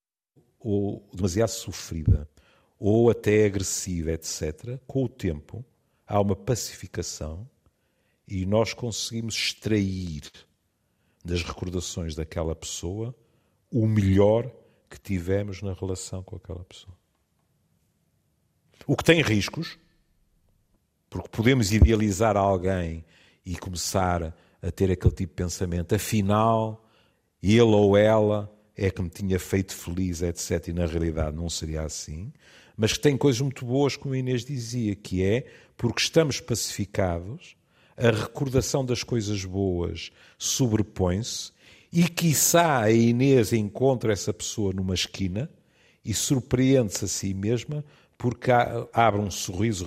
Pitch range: 90-115 Hz